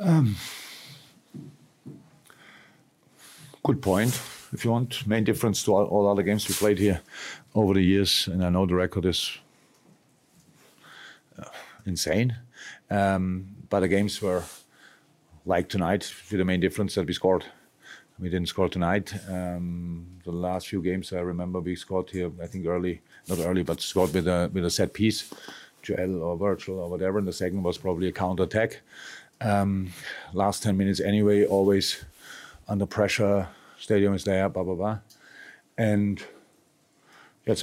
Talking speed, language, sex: 150 wpm, English, male